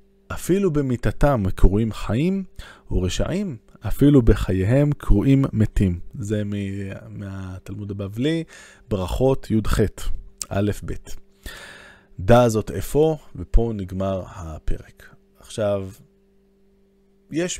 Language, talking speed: Hebrew, 80 wpm